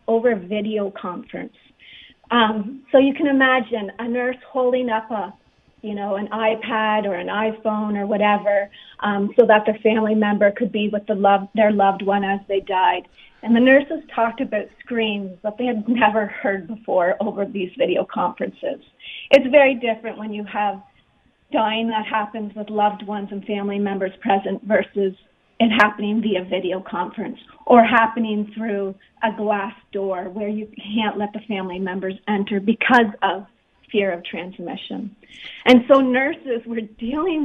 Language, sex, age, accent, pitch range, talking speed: English, female, 30-49, American, 205-250 Hz, 160 wpm